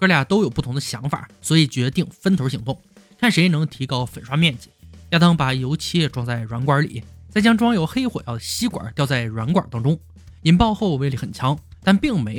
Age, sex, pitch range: 20-39, male, 125-185 Hz